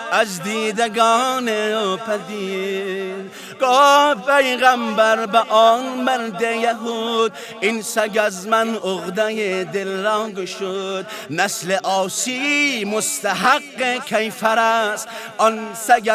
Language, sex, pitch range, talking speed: Persian, male, 210-250 Hz, 90 wpm